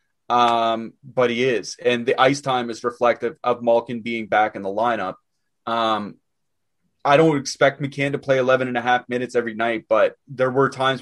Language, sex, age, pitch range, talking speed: English, male, 30-49, 115-160 Hz, 190 wpm